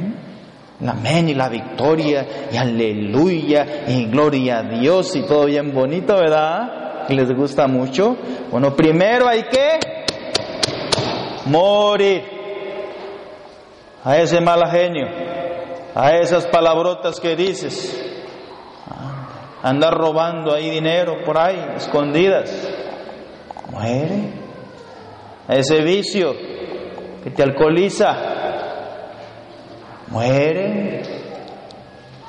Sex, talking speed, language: male, 90 wpm, Spanish